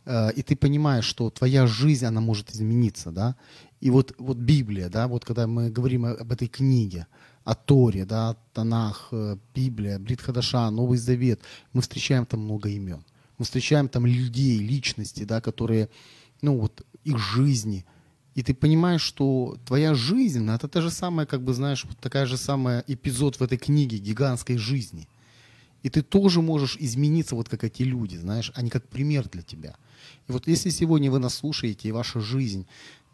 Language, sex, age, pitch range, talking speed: Ukrainian, male, 30-49, 115-140 Hz, 170 wpm